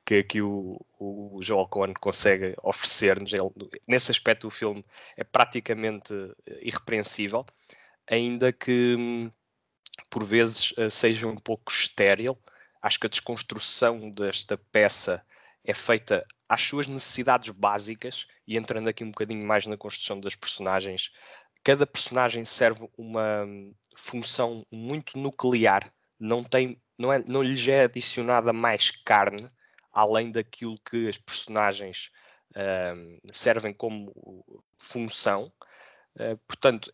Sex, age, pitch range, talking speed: male, 20-39, 105-120 Hz, 110 wpm